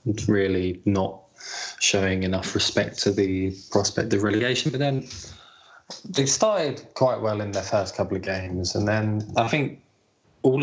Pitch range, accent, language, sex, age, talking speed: 100-110 Hz, British, English, male, 20-39, 150 wpm